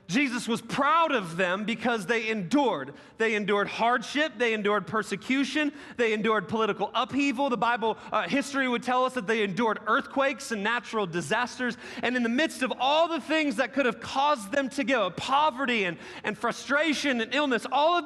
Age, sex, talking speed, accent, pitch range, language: 30-49, male, 185 wpm, American, 225-285 Hz, English